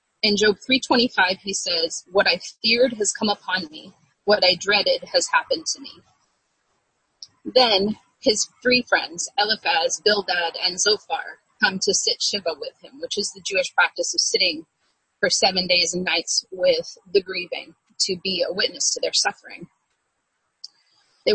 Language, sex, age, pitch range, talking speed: English, female, 30-49, 190-275 Hz, 160 wpm